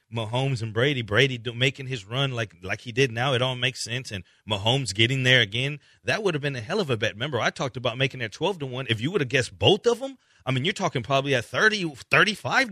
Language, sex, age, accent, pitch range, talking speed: English, male, 40-59, American, 110-145 Hz, 260 wpm